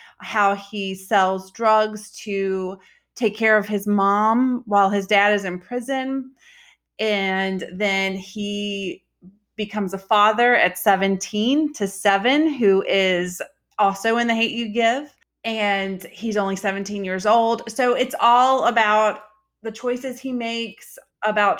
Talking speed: 135 wpm